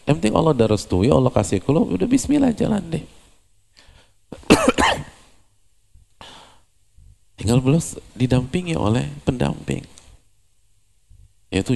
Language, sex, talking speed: Indonesian, male, 90 wpm